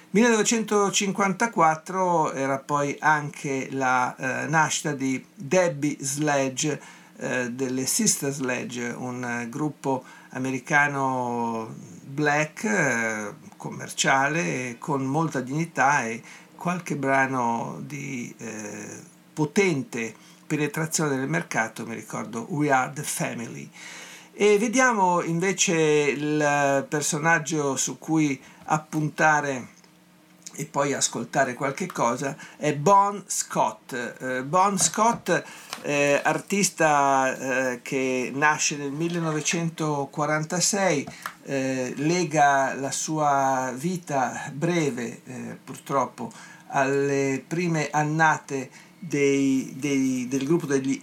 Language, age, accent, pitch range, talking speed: Italian, 50-69, native, 135-165 Hz, 95 wpm